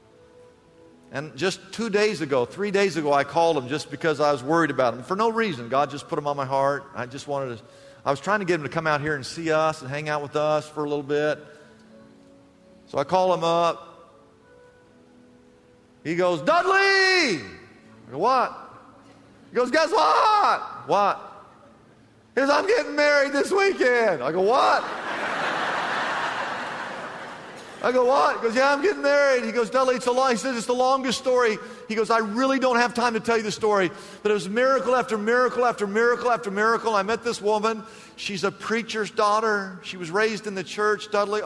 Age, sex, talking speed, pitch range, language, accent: 40-59, male, 200 wpm, 150-230 Hz, English, American